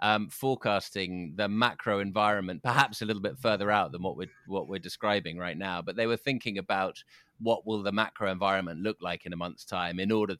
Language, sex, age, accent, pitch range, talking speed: English, male, 30-49, British, 95-110 Hz, 225 wpm